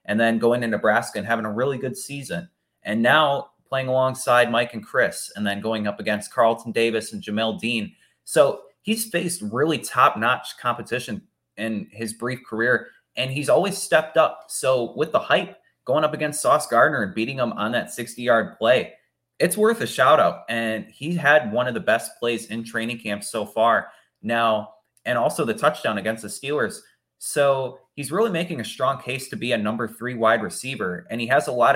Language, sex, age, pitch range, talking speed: English, male, 20-39, 115-165 Hz, 195 wpm